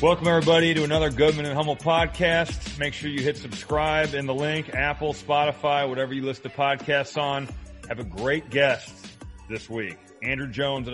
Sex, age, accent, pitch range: male, 30-49, American, 115-150 Hz